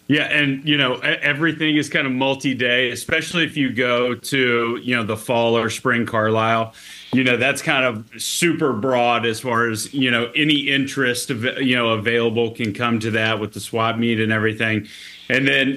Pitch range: 110-130 Hz